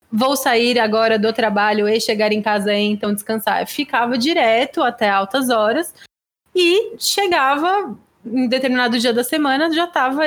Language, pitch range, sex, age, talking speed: Portuguese, 215-265 Hz, female, 20-39, 160 wpm